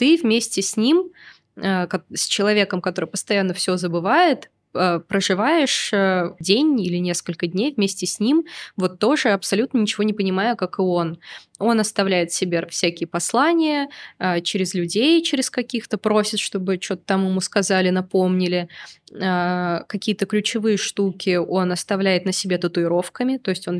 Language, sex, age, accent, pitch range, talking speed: Russian, female, 20-39, native, 180-215 Hz, 135 wpm